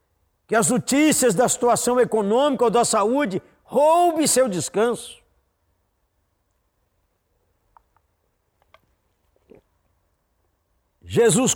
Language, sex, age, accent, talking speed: Portuguese, male, 50-69, Brazilian, 65 wpm